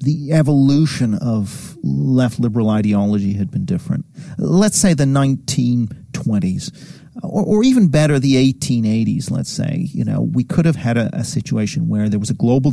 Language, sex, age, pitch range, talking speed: English, male, 40-59, 115-165 Hz, 165 wpm